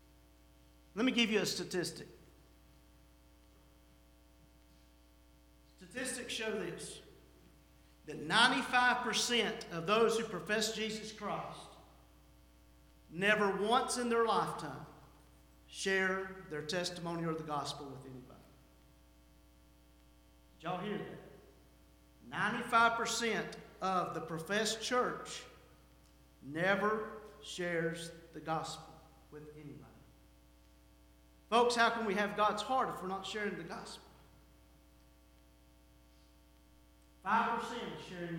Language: English